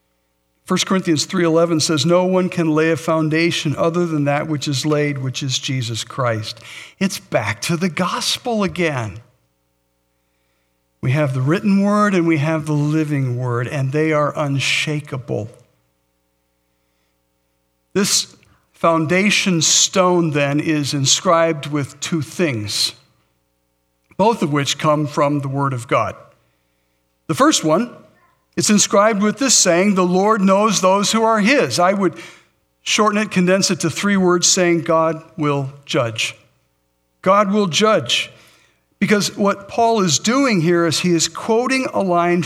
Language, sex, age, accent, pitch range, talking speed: English, male, 60-79, American, 115-180 Hz, 145 wpm